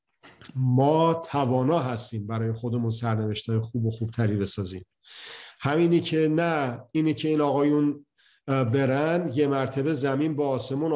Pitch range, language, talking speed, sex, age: 120-155 Hz, Persian, 130 wpm, male, 50-69